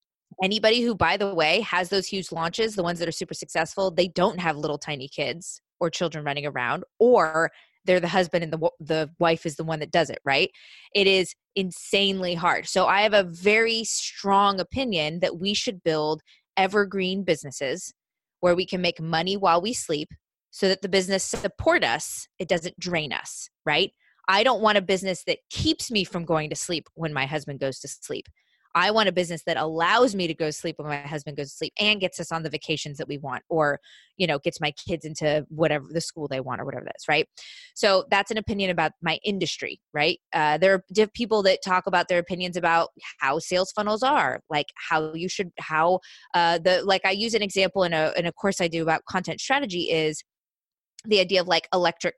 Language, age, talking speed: English, 20-39, 215 wpm